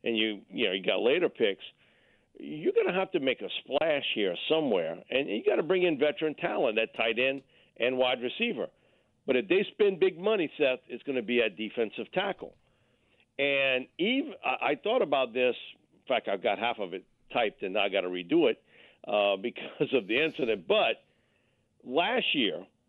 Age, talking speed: 50-69, 195 wpm